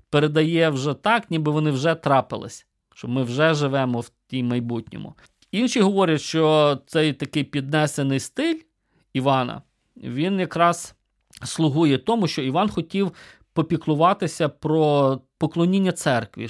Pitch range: 130-175 Hz